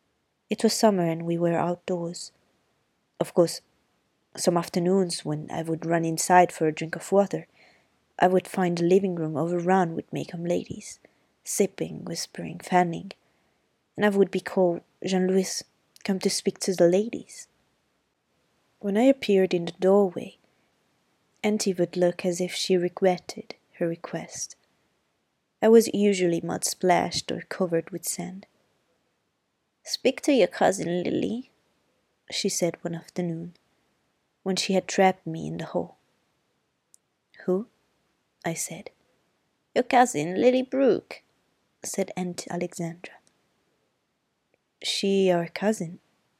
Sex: female